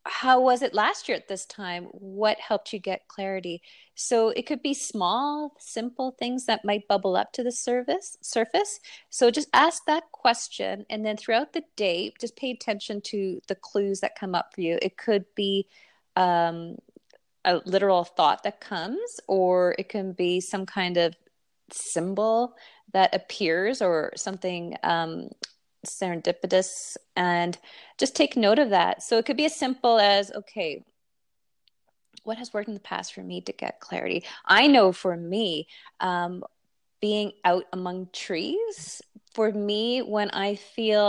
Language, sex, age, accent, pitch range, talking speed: English, female, 30-49, American, 185-235 Hz, 160 wpm